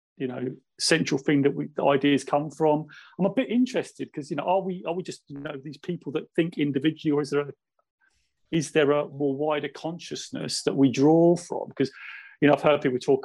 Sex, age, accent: male, 40-59, British